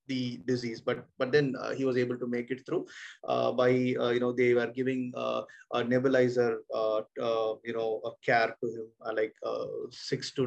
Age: 20-39